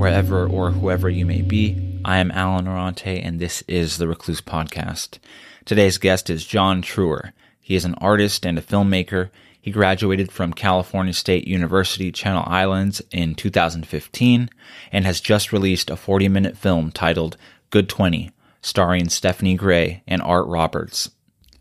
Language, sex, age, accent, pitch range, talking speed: English, male, 20-39, American, 90-105 Hz, 150 wpm